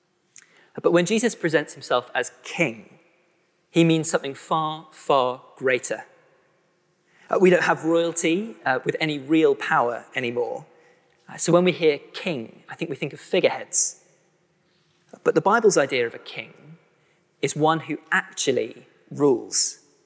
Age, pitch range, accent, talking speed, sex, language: 20-39, 155-190 Hz, British, 145 wpm, male, English